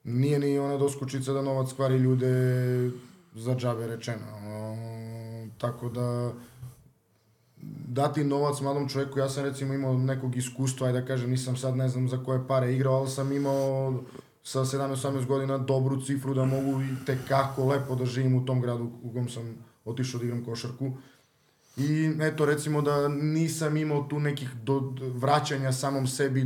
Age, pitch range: 20-39, 125-135 Hz